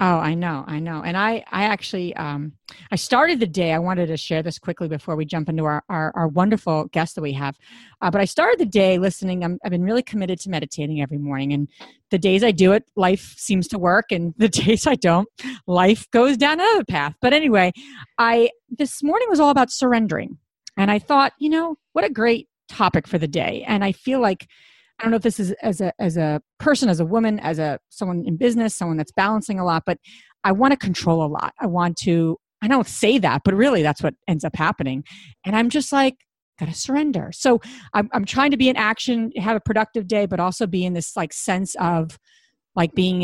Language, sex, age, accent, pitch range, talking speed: English, female, 40-59, American, 170-240 Hz, 230 wpm